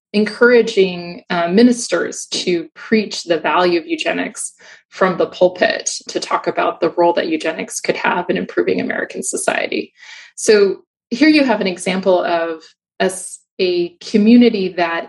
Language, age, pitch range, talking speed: English, 20-39, 170-225 Hz, 145 wpm